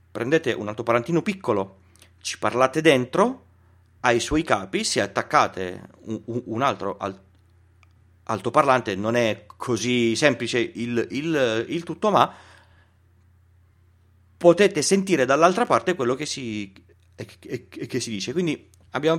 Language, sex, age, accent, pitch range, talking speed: Italian, male, 40-59, native, 90-125 Hz, 120 wpm